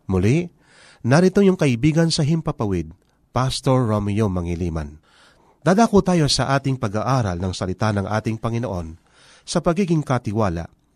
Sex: male